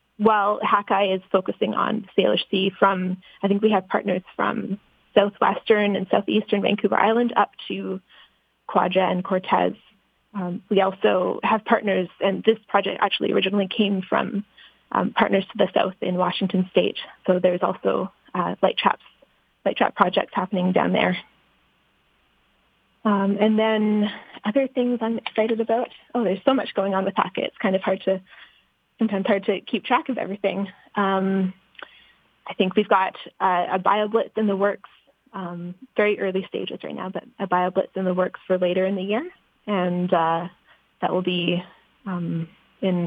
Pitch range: 185-215 Hz